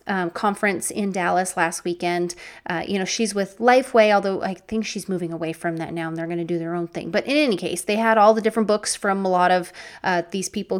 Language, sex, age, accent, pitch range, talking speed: English, female, 30-49, American, 185-230 Hz, 250 wpm